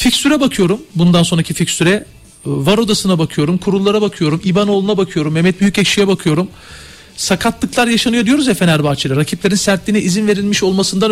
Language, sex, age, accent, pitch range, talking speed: Turkish, male, 40-59, native, 180-220 Hz, 135 wpm